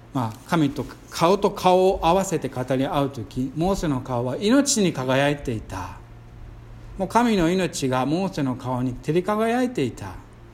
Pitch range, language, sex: 120-165 Hz, Japanese, male